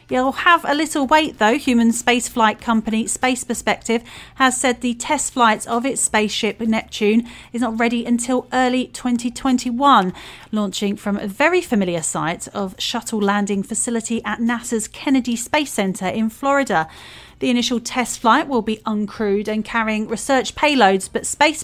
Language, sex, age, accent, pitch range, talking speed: English, female, 40-59, British, 200-255 Hz, 155 wpm